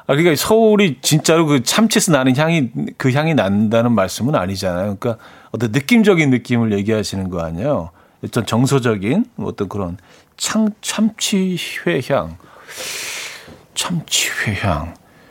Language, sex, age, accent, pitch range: Korean, male, 40-59, native, 105-160 Hz